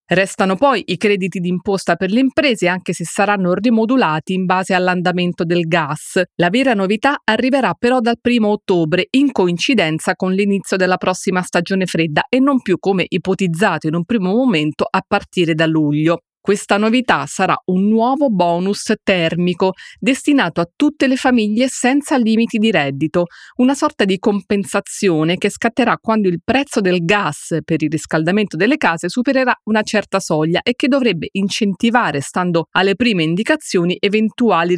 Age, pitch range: 30-49, 170-230 Hz